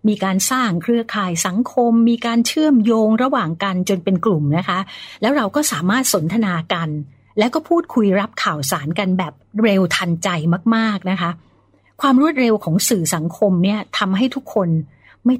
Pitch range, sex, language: 165-225 Hz, female, Thai